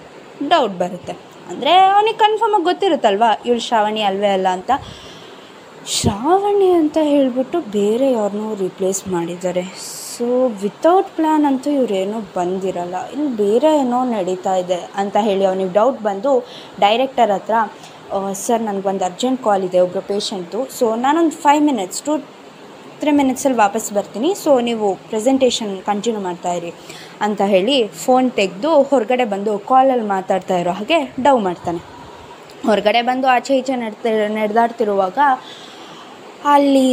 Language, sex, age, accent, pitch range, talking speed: Kannada, female, 20-39, native, 200-280 Hz, 125 wpm